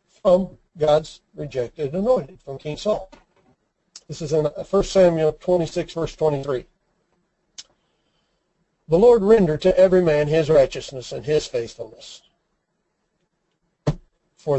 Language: English